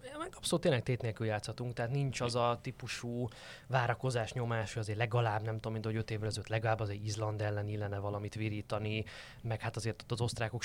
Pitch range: 105-125 Hz